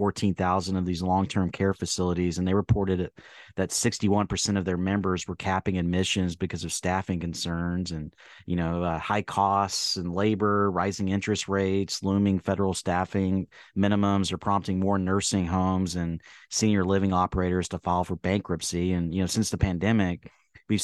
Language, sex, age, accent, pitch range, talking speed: English, male, 30-49, American, 90-100 Hz, 160 wpm